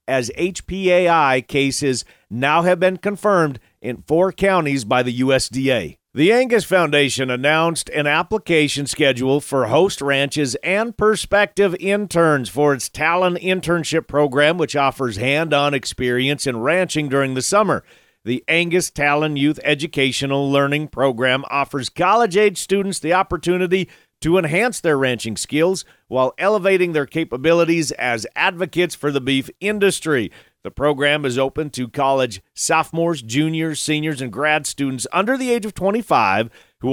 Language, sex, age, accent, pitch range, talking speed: English, male, 40-59, American, 140-180 Hz, 140 wpm